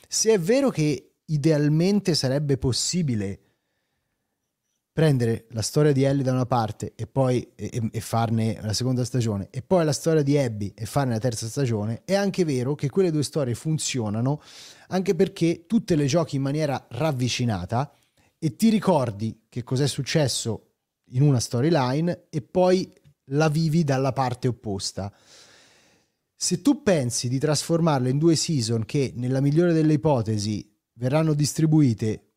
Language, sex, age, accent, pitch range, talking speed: Italian, male, 30-49, native, 115-160 Hz, 150 wpm